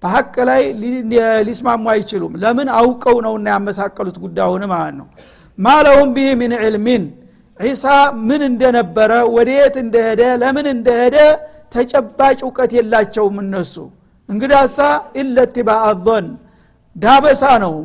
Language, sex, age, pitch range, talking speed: Amharic, male, 60-79, 215-245 Hz, 115 wpm